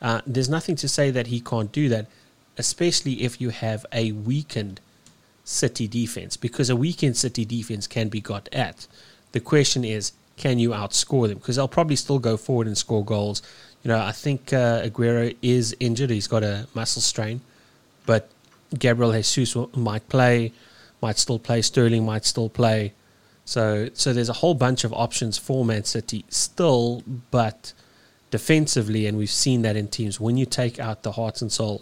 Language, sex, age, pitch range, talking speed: English, male, 30-49, 105-125 Hz, 180 wpm